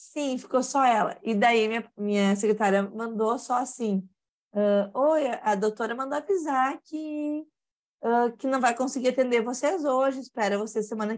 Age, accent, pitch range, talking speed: 20-39, Brazilian, 210-275 Hz, 160 wpm